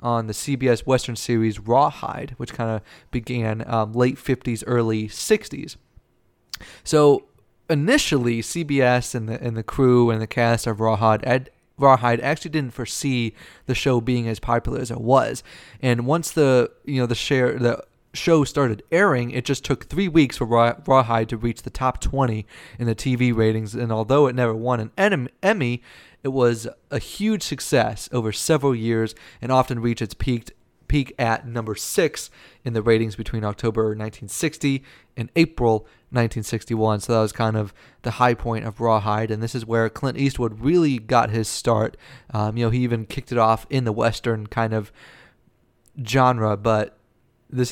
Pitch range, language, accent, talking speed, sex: 110-130 Hz, English, American, 175 wpm, male